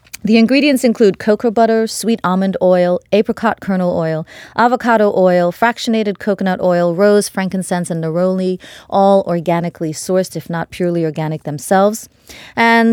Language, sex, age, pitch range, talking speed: English, female, 30-49, 175-215 Hz, 135 wpm